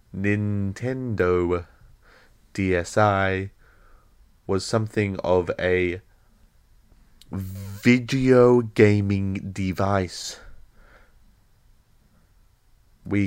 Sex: male